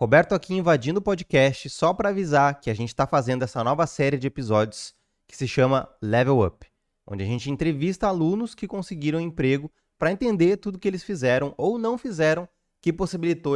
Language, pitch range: Portuguese, 115-155 Hz